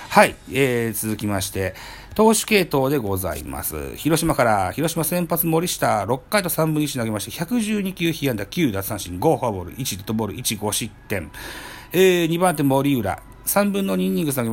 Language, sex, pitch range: Japanese, male, 105-165 Hz